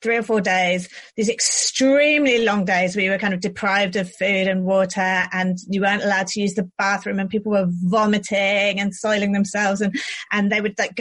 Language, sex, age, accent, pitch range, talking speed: English, female, 30-49, British, 185-230 Hz, 205 wpm